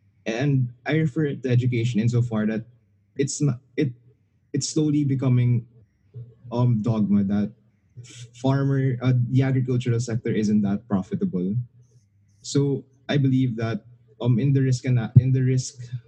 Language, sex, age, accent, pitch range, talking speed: English, male, 20-39, Filipino, 105-125 Hz, 140 wpm